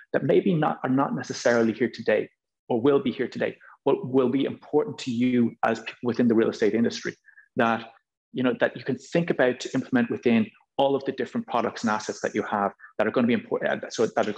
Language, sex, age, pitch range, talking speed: English, male, 30-49, 115-170 Hz, 230 wpm